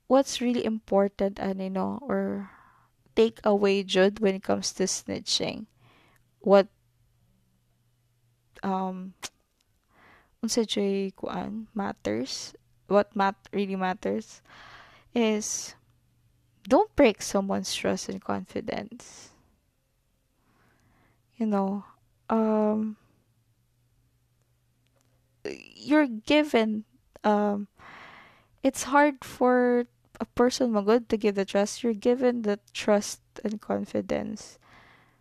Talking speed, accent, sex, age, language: 85 wpm, native, female, 20-39, Filipino